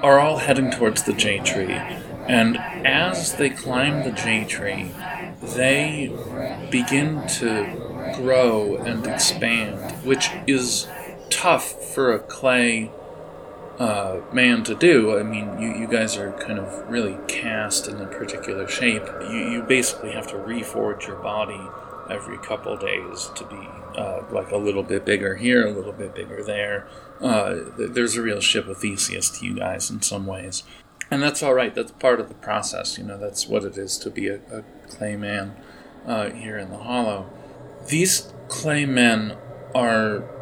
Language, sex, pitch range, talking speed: English, male, 105-140 Hz, 165 wpm